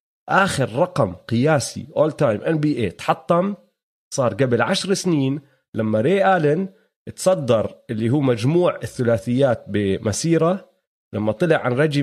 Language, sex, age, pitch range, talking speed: Arabic, male, 30-49, 125-180 Hz, 130 wpm